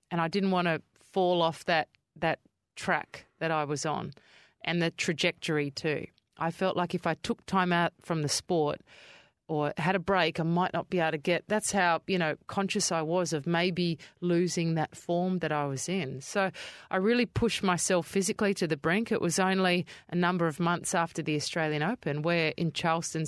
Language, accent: English, Australian